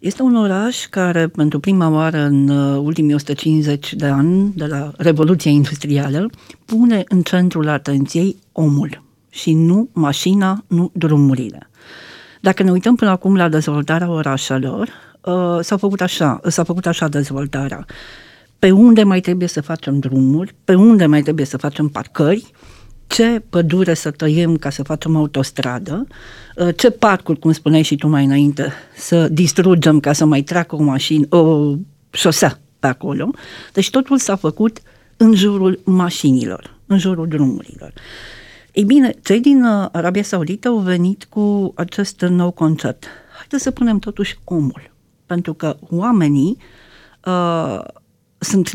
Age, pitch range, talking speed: 40-59, 150-205 Hz, 140 wpm